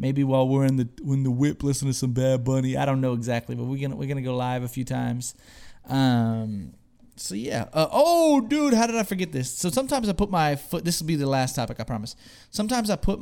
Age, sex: 30-49, male